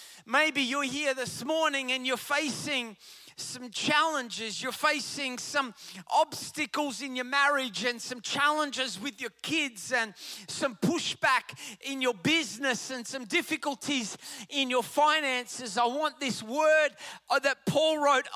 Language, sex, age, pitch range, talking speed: English, male, 30-49, 255-295 Hz, 135 wpm